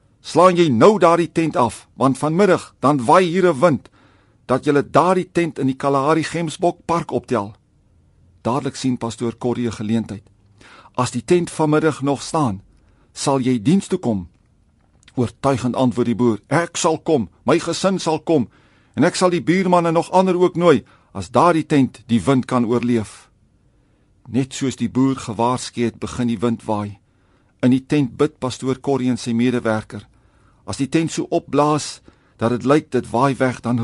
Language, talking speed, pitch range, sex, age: English, 180 wpm, 115-150 Hz, male, 50-69